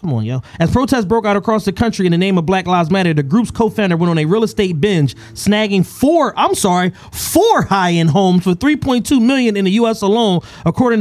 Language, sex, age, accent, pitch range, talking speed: English, male, 30-49, American, 170-225 Hz, 225 wpm